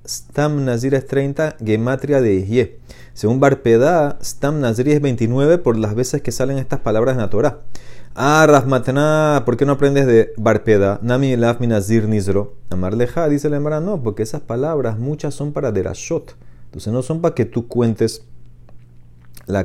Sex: male